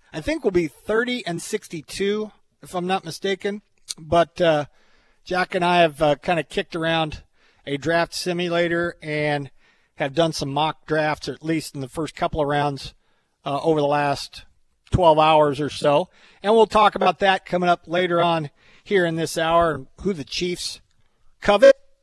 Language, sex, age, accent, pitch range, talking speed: English, male, 50-69, American, 145-185 Hz, 170 wpm